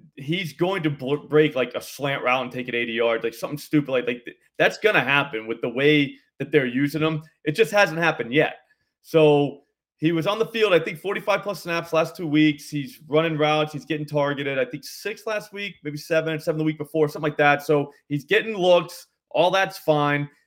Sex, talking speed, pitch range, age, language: male, 220 wpm, 135-165 Hz, 30-49, English